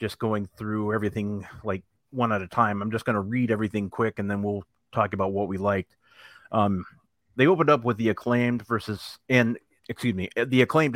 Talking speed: 205 wpm